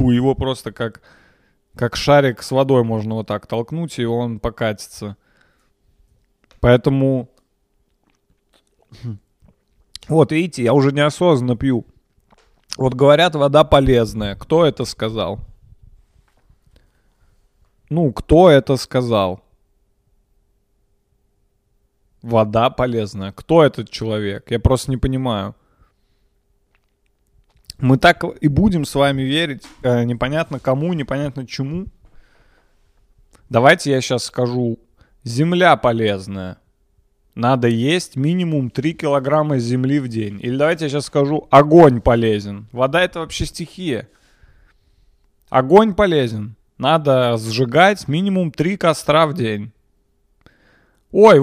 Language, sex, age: Russian, male, 20-39